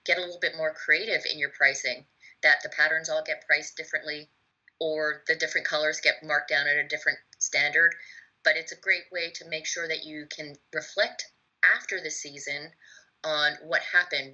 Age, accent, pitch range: 30-49, American, 150-170 Hz